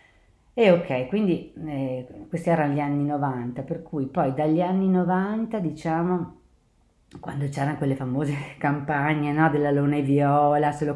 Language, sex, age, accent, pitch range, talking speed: Italian, female, 40-59, native, 135-175 Hz, 150 wpm